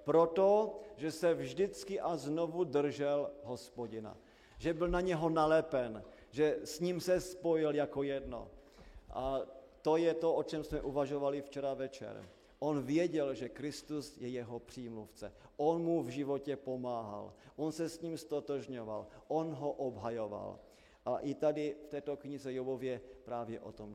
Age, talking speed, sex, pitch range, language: 40-59, 150 wpm, male, 140-180 Hz, Slovak